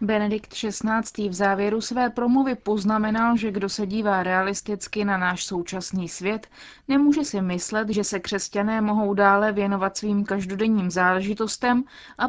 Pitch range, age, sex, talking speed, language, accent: 185-220 Hz, 20-39, female, 140 wpm, Czech, native